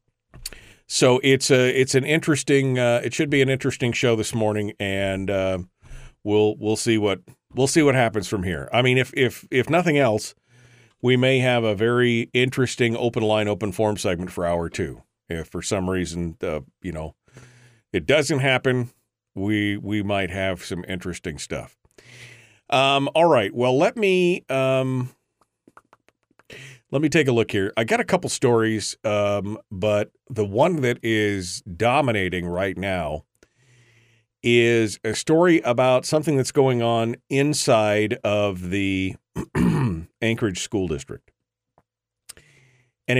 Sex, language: male, English